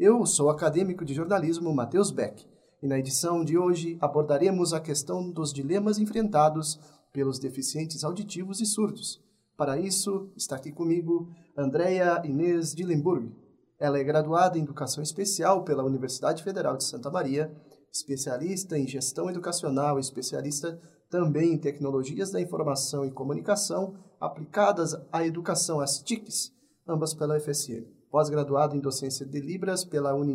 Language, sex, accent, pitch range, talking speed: Portuguese, male, Brazilian, 145-175 Hz, 140 wpm